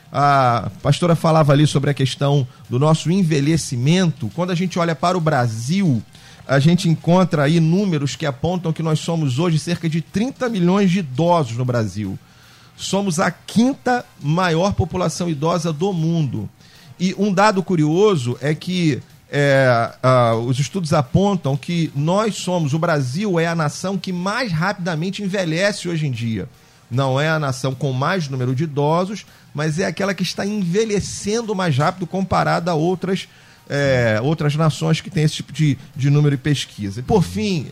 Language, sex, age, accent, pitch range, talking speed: Portuguese, male, 40-59, Brazilian, 135-175 Hz, 165 wpm